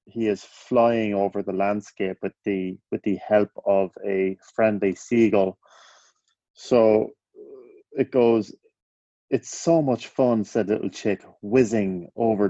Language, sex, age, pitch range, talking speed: English, male, 30-49, 95-125 Hz, 125 wpm